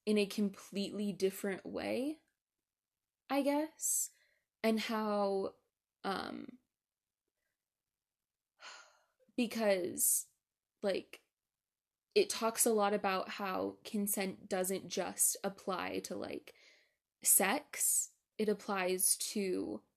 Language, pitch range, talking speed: English, 195-270 Hz, 85 wpm